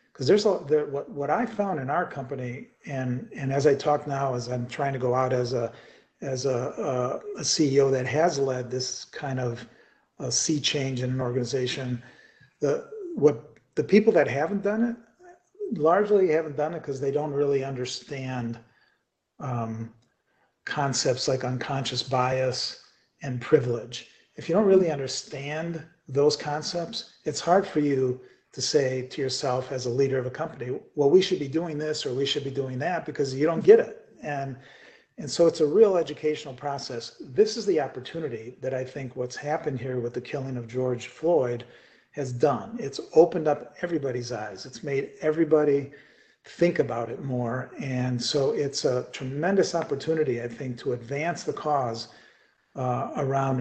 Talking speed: 170 wpm